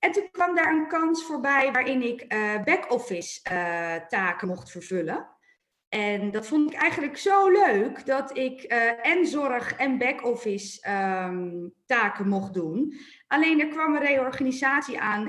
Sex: female